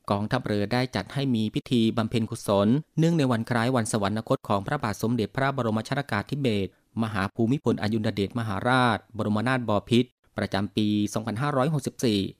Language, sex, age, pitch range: Thai, male, 20-39, 105-130 Hz